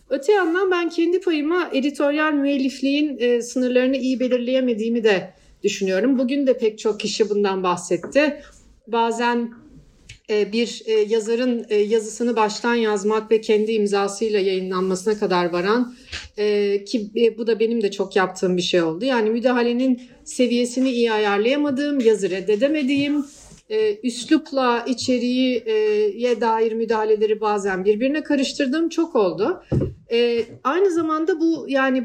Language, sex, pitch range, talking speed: Turkish, female, 220-275 Hz, 130 wpm